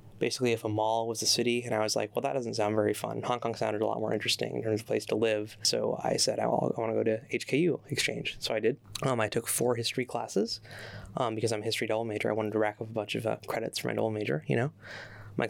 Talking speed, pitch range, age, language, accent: 285 wpm, 110-120 Hz, 20-39, English, American